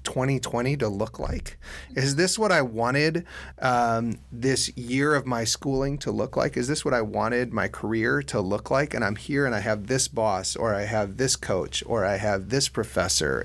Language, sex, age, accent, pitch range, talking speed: English, male, 30-49, American, 95-130 Hz, 205 wpm